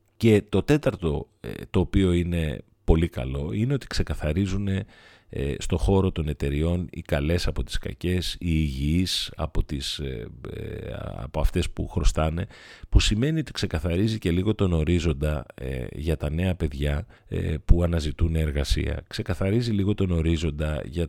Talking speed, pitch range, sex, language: 135 wpm, 75-100 Hz, male, Greek